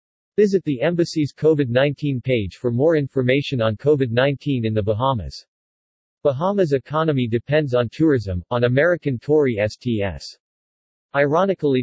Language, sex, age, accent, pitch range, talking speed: English, male, 50-69, American, 115-150 Hz, 115 wpm